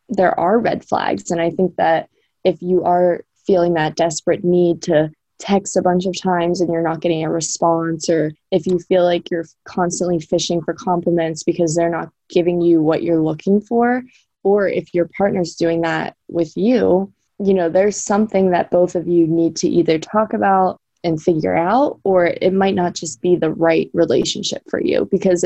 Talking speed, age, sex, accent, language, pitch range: 195 wpm, 20-39, female, American, English, 165-185 Hz